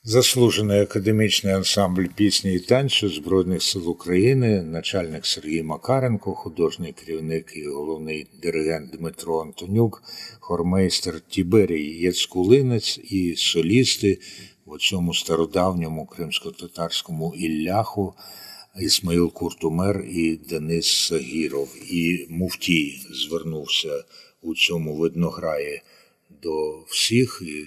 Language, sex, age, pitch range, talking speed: Ukrainian, male, 50-69, 85-105 Hz, 95 wpm